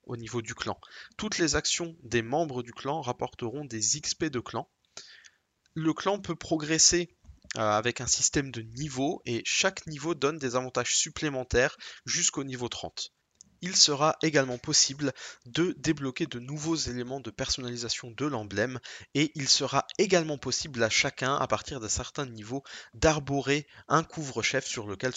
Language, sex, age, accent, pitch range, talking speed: French, male, 20-39, French, 115-150 Hz, 155 wpm